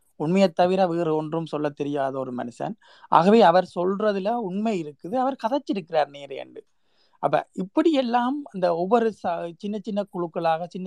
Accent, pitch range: native, 160-215 Hz